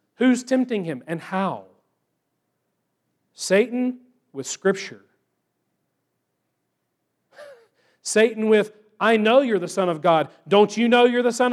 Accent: American